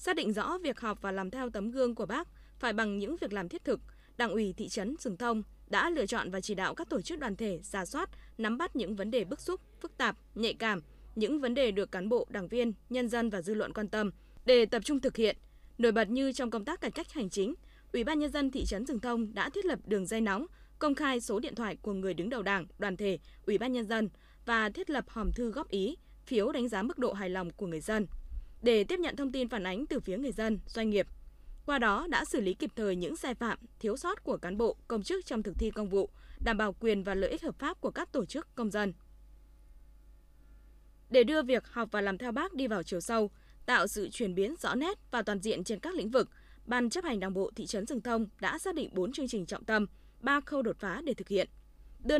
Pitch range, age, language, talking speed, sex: 200-265 Hz, 20-39, Vietnamese, 260 wpm, female